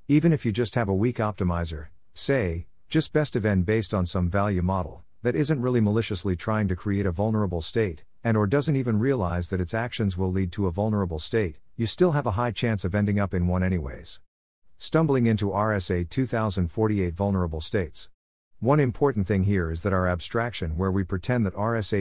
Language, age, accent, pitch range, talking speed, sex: English, 50-69, American, 90-115 Hz, 200 wpm, male